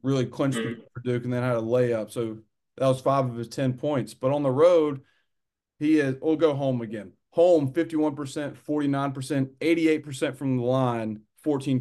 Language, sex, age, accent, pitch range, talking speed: English, male, 30-49, American, 125-150 Hz, 180 wpm